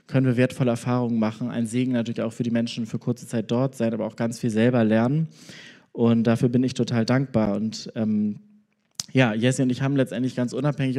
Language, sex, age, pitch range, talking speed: German, male, 20-39, 120-140 Hz, 215 wpm